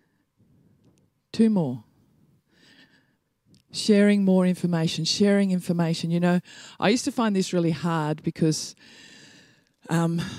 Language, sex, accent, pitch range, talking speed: English, female, Australian, 165-225 Hz, 105 wpm